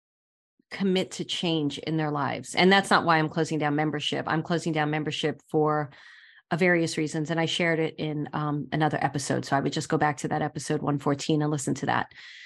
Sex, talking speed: female, 210 wpm